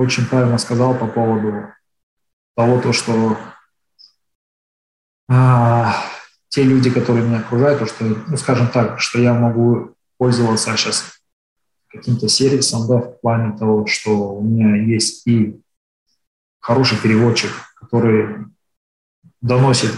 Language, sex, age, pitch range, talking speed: English, male, 20-39, 110-130 Hz, 115 wpm